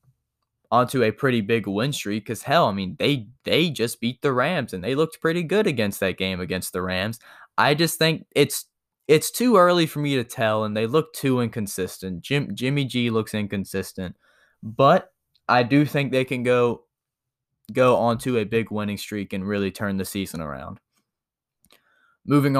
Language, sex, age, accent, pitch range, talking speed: English, male, 10-29, American, 110-145 Hz, 180 wpm